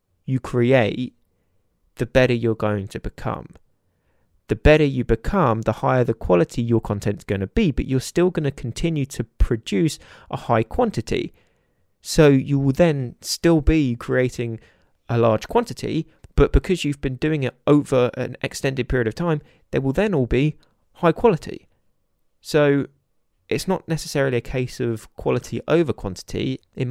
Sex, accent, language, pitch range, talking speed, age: male, British, English, 115-145 Hz, 165 wpm, 20-39